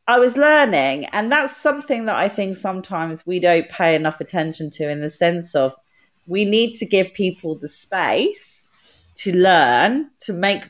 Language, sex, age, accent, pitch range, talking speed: English, female, 30-49, British, 150-210 Hz, 175 wpm